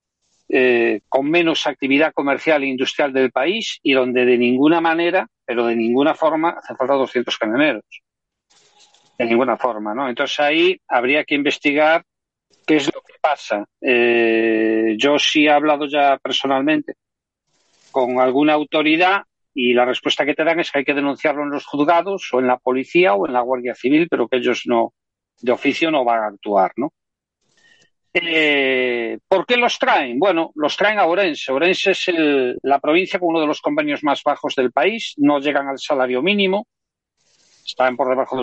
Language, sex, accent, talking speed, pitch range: Spanish, male, Spanish, 175 wpm, 130-170 Hz